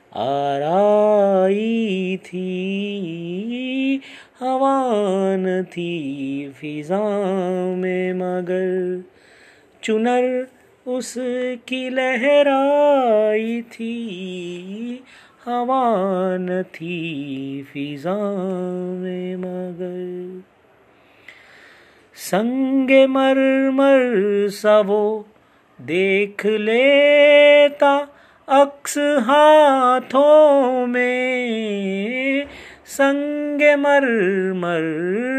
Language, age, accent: Hindi, 30-49, native